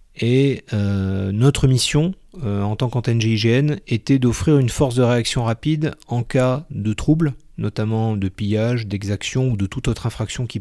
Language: French